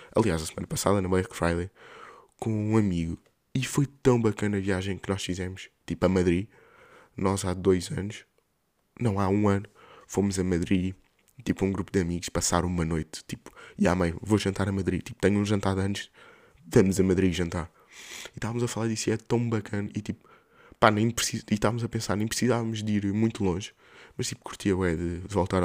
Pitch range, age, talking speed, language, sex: 90-110 Hz, 20-39, 210 wpm, Portuguese, male